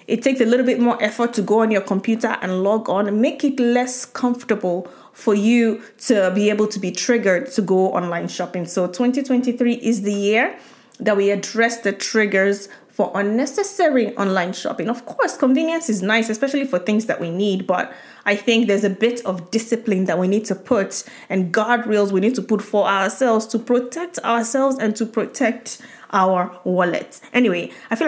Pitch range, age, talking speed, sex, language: 200-250 Hz, 20-39, 190 wpm, female, English